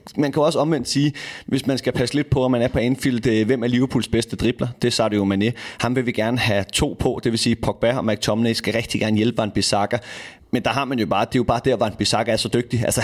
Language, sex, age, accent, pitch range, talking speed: Danish, male, 30-49, native, 110-130 Hz, 290 wpm